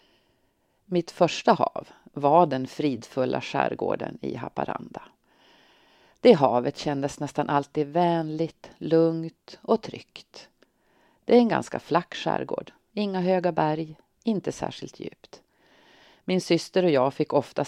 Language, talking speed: Swedish, 120 wpm